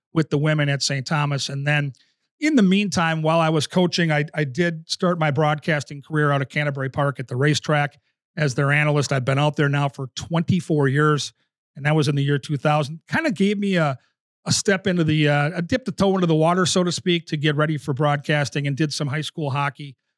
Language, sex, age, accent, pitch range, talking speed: English, male, 40-59, American, 145-160 Hz, 230 wpm